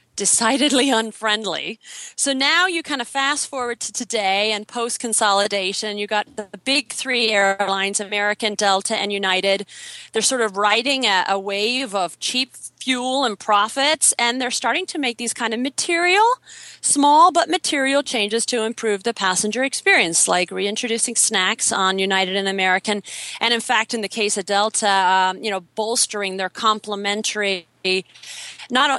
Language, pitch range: English, 195-250 Hz